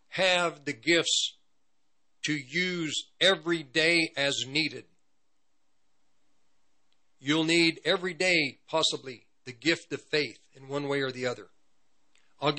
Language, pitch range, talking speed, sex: English, 130-170 Hz, 120 wpm, male